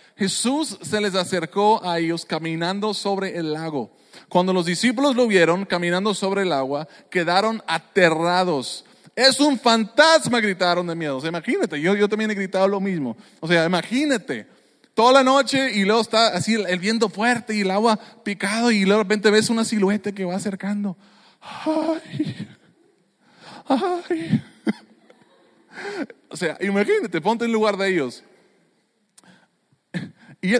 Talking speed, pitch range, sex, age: 150 wpm, 170-220 Hz, male, 20-39